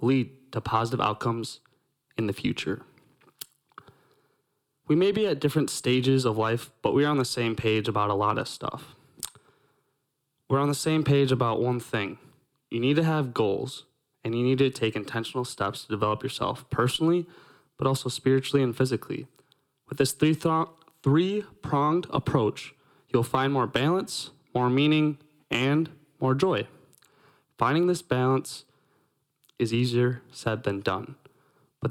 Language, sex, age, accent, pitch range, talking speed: English, male, 20-39, American, 120-145 Hz, 150 wpm